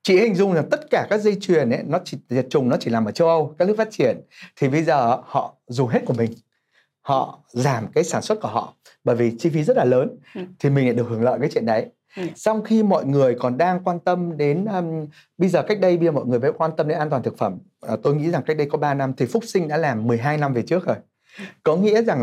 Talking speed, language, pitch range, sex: 275 wpm, Vietnamese, 125-185 Hz, male